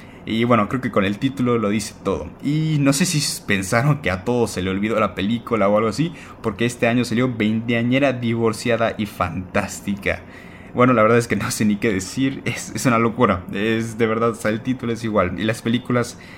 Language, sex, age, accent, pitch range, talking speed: Spanish, male, 20-39, Mexican, 100-120 Hz, 215 wpm